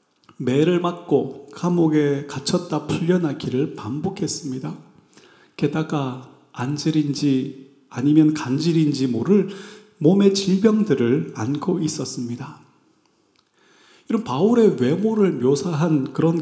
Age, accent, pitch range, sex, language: 40-59, native, 140-205 Hz, male, Korean